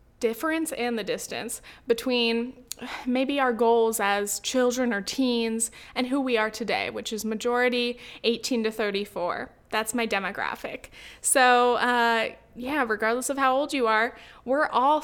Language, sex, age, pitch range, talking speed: English, female, 20-39, 215-270 Hz, 150 wpm